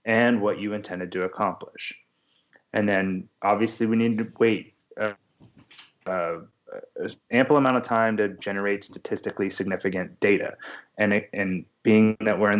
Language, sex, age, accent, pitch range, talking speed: English, male, 30-49, American, 95-115 Hz, 150 wpm